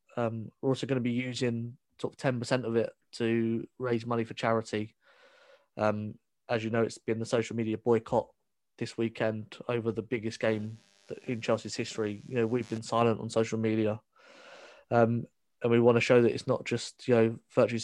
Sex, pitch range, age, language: male, 110-120 Hz, 20-39, English